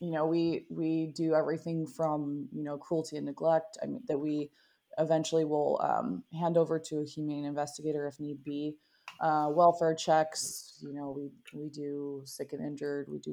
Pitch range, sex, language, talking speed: 150-180 Hz, female, English, 185 wpm